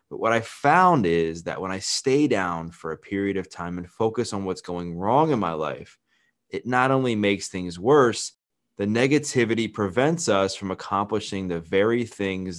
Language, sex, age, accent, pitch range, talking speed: English, male, 20-39, American, 95-120 Hz, 185 wpm